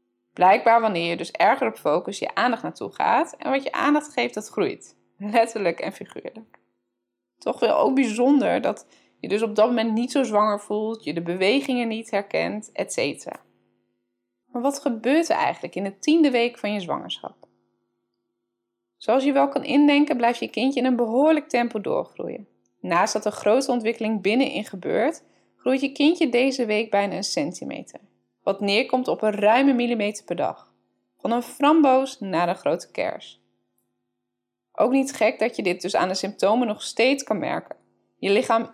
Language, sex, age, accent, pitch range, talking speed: English, female, 20-39, Dutch, 170-255 Hz, 175 wpm